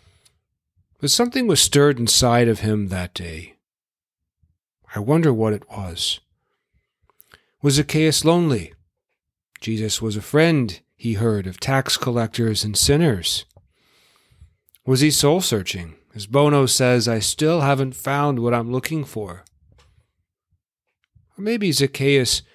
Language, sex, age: English, male, 40-59